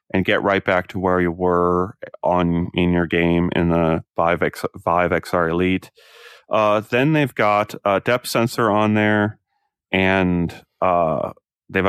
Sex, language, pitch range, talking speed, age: male, English, 90-120 Hz, 155 wpm, 30-49